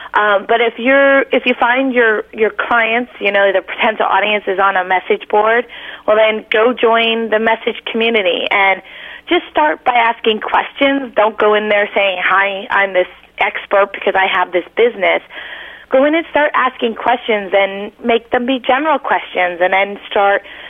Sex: female